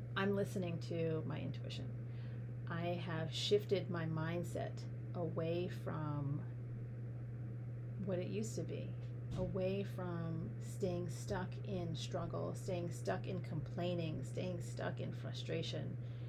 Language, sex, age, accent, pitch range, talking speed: English, female, 30-49, American, 115-125 Hz, 115 wpm